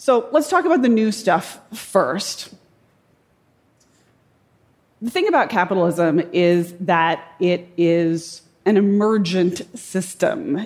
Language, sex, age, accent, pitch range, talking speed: English, female, 30-49, American, 185-265 Hz, 105 wpm